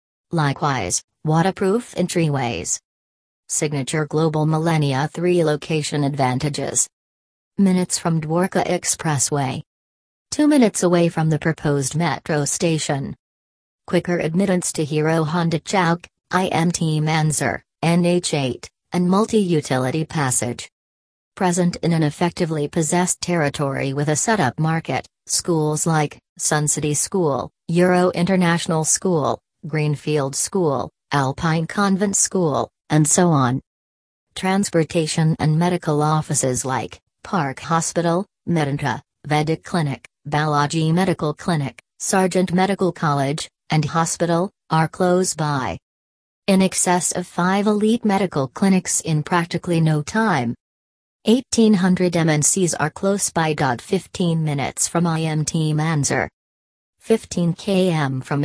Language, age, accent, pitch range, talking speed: English, 40-59, American, 145-180 Hz, 105 wpm